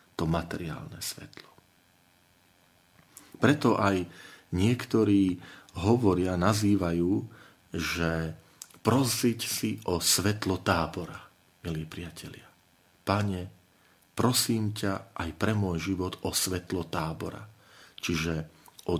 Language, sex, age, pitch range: Slovak, male, 40-59, 90-105 Hz